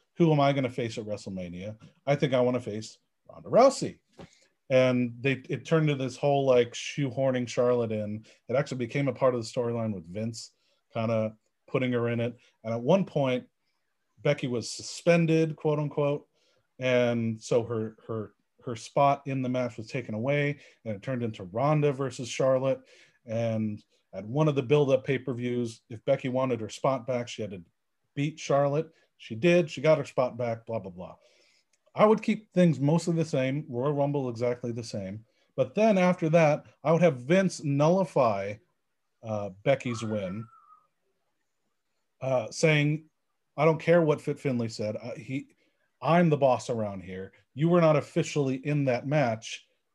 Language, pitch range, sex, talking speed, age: English, 115-150 Hz, male, 170 wpm, 40-59